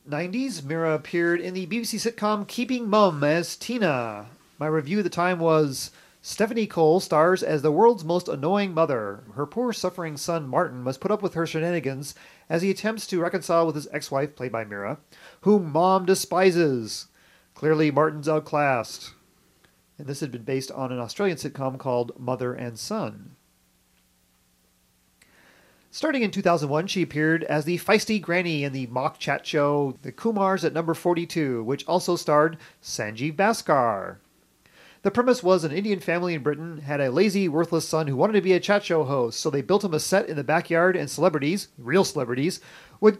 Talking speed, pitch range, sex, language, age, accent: 175 wpm, 140-185 Hz, male, English, 40-59, American